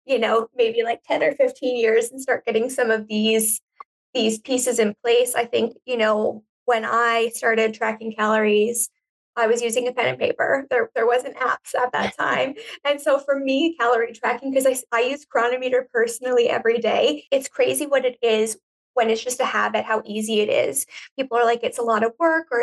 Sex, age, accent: female, 20-39, American